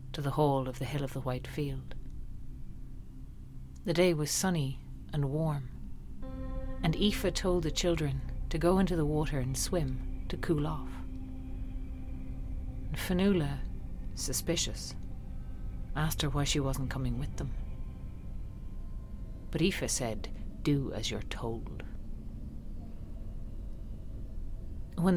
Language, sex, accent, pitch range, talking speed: English, female, Irish, 100-155 Hz, 115 wpm